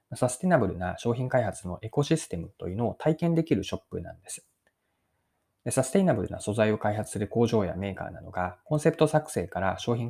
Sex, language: male, Japanese